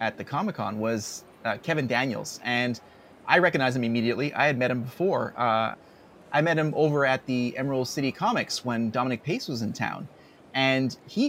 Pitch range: 120-150 Hz